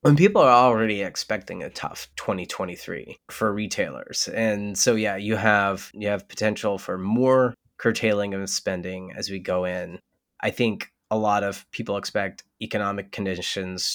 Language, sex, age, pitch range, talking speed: English, male, 20-39, 95-110 Hz, 155 wpm